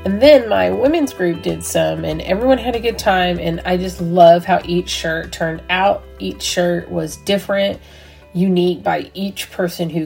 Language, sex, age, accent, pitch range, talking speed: English, female, 30-49, American, 165-195 Hz, 185 wpm